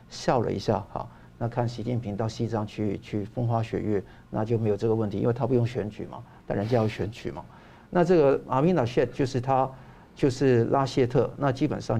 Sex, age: male, 50-69